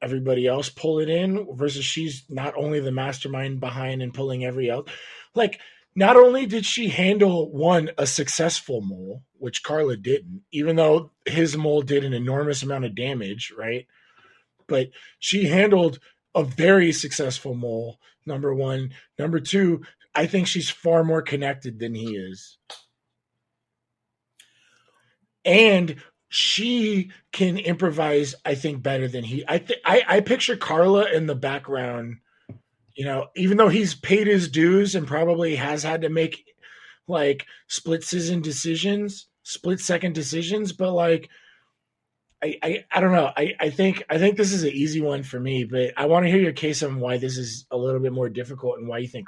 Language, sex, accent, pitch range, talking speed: English, male, American, 130-175 Hz, 165 wpm